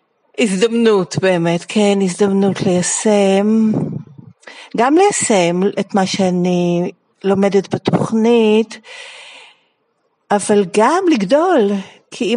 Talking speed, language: 80 wpm, Hebrew